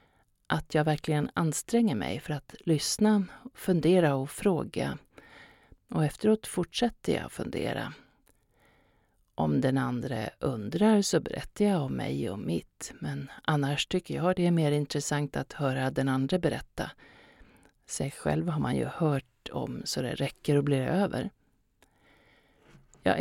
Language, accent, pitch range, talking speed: Swedish, native, 135-180 Hz, 140 wpm